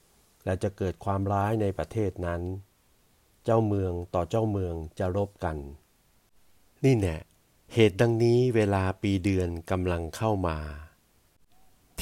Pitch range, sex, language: 95-115 Hz, male, Thai